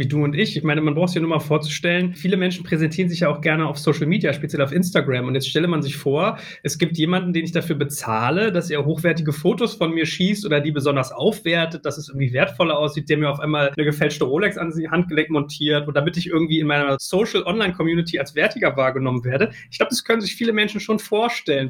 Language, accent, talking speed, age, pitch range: German, German, 245 wpm, 30-49, 145-180 Hz